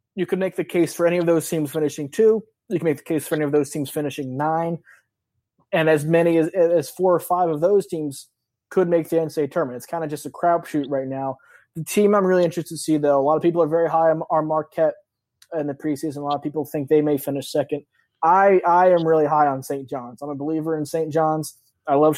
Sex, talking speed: male, 250 wpm